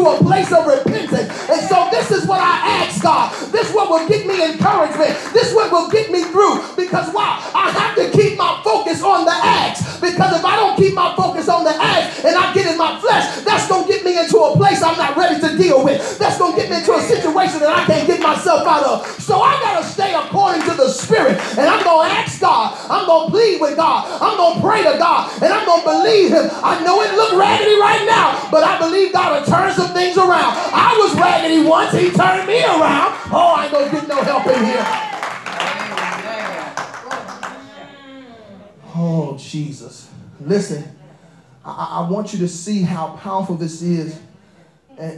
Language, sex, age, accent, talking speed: English, male, 30-49, American, 215 wpm